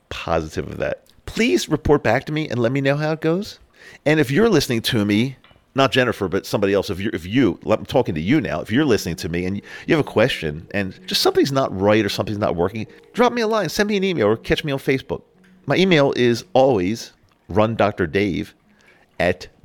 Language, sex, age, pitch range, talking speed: English, male, 50-69, 90-130 Hz, 230 wpm